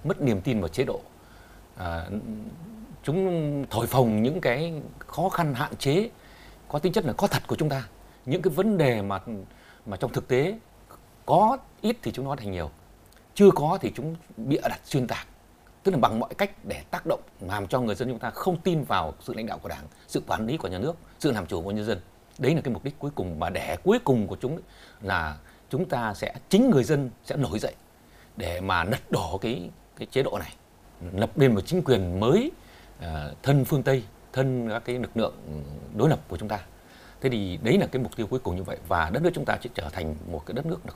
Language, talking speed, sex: Vietnamese, 235 wpm, male